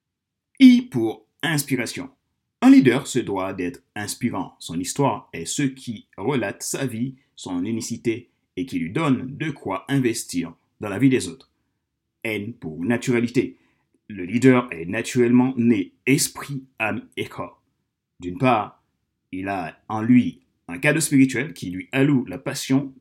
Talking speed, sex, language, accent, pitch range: 150 wpm, male, French, French, 105-135 Hz